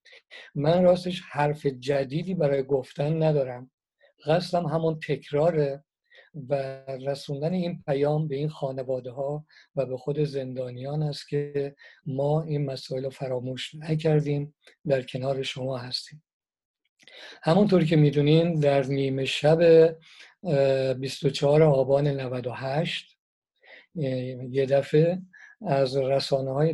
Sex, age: male, 50-69